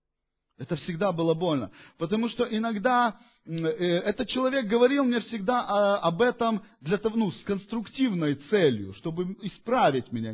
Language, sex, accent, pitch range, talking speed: Russian, male, native, 130-210 Hz, 150 wpm